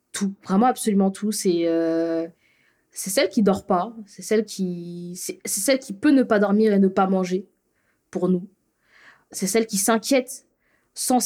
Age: 20-39